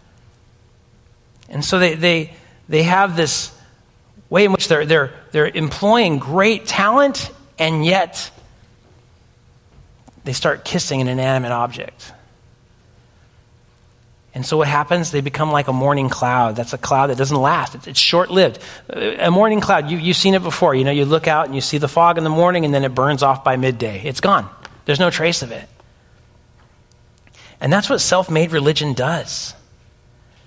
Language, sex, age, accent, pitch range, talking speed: English, male, 40-59, American, 120-160 Hz, 165 wpm